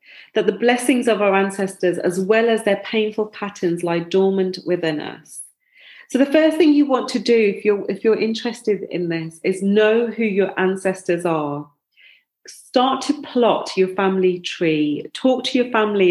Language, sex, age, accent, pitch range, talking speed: English, female, 40-59, British, 175-225 Hz, 170 wpm